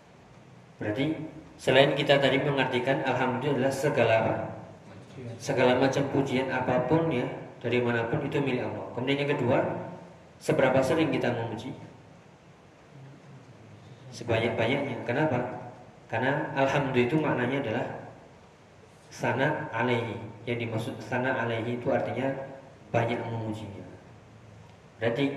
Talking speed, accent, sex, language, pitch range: 95 wpm, native, male, Indonesian, 115-135 Hz